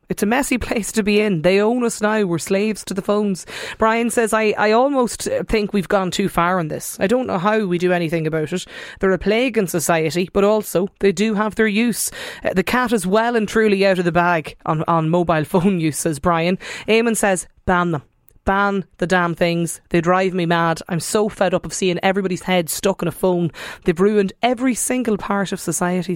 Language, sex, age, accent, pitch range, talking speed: English, female, 20-39, Irish, 170-215 Hz, 220 wpm